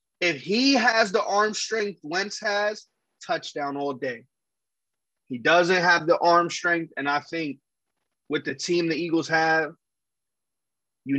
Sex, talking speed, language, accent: male, 145 wpm, English, American